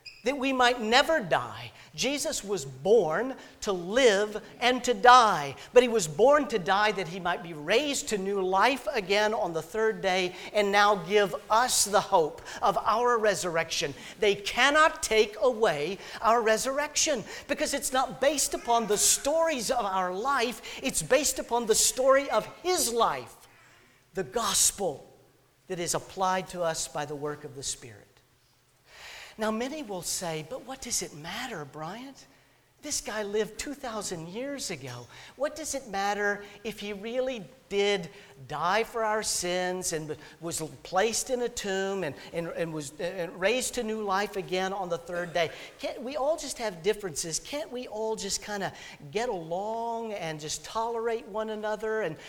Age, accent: 50-69, American